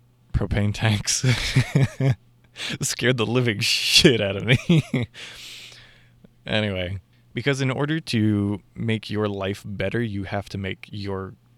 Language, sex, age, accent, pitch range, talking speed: English, male, 20-39, American, 100-120 Hz, 120 wpm